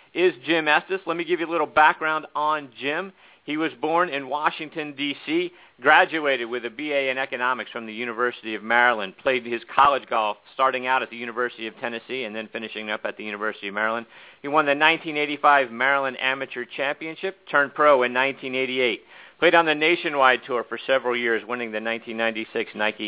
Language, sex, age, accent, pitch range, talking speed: English, male, 50-69, American, 115-150 Hz, 185 wpm